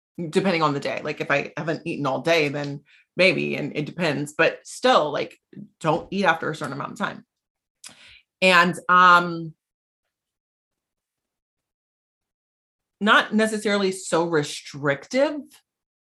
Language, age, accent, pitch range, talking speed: English, 30-49, American, 150-205 Hz, 125 wpm